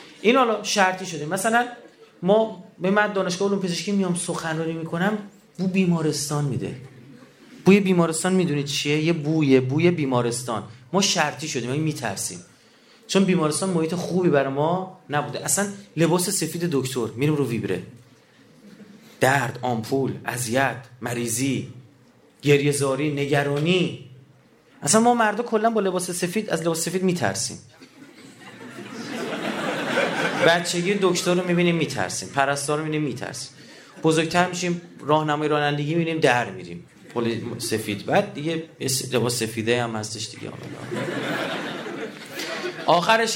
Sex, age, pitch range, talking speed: male, 30-49, 135-195 Hz, 125 wpm